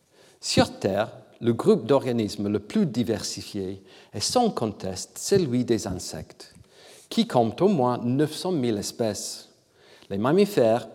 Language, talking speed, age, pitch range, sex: French, 125 wpm, 50-69, 105-135 Hz, male